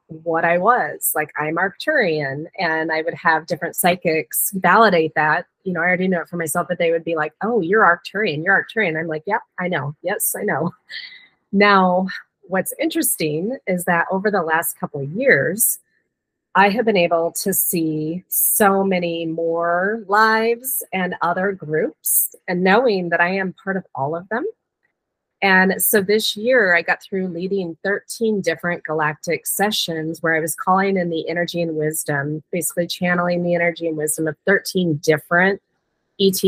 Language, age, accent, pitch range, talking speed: English, 30-49, American, 160-195 Hz, 175 wpm